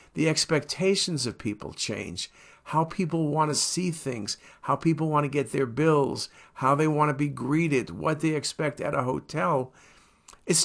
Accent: American